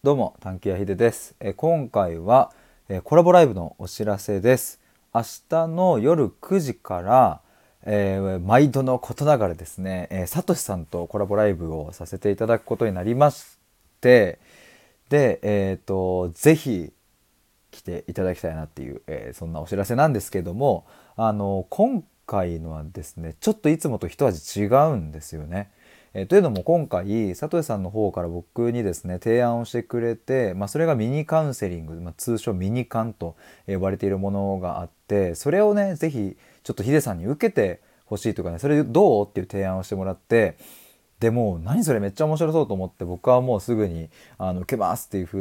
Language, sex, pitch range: Japanese, male, 90-130 Hz